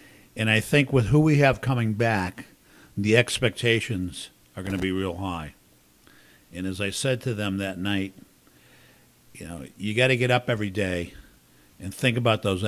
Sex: male